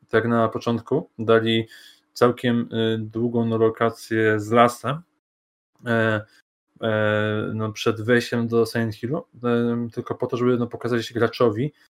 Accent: native